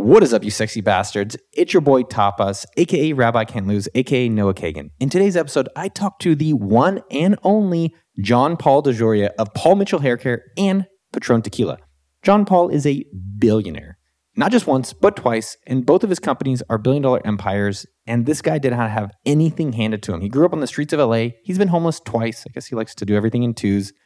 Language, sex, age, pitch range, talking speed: English, male, 20-39, 105-140 Hz, 215 wpm